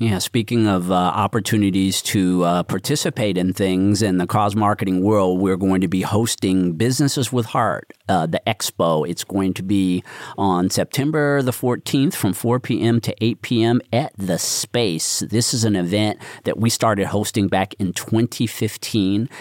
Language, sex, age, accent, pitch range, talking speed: English, male, 40-59, American, 95-115 Hz, 165 wpm